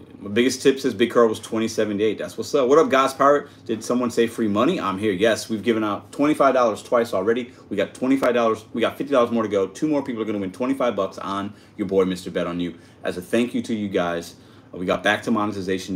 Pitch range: 95-115 Hz